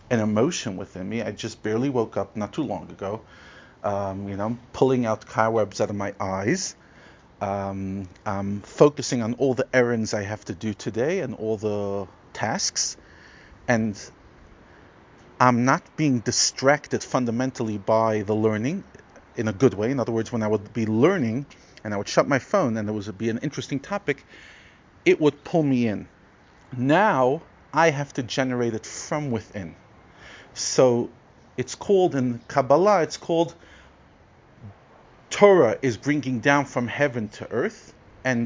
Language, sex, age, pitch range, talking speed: English, male, 40-59, 110-130 Hz, 160 wpm